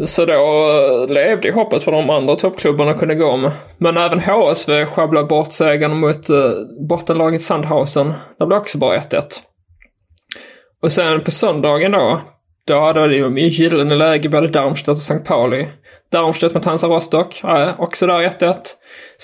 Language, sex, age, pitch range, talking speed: English, male, 20-39, 145-170 Hz, 155 wpm